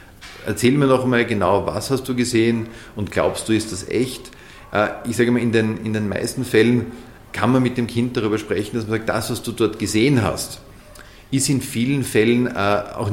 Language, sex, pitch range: German, male, 105-120 Hz